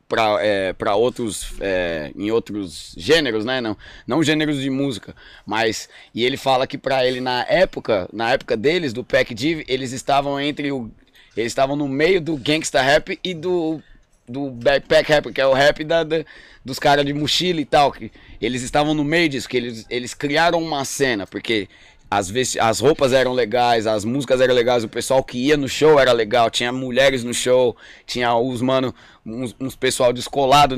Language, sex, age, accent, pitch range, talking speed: Portuguese, male, 20-39, Brazilian, 120-150 Hz, 180 wpm